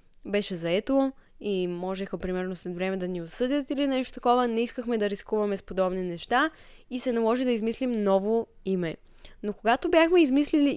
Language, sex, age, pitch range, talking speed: Bulgarian, female, 20-39, 200-255 Hz, 175 wpm